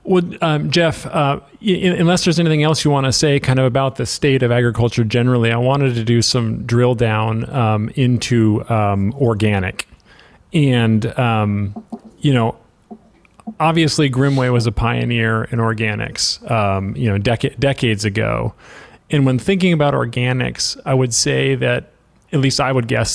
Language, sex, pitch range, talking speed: English, male, 110-135 Hz, 165 wpm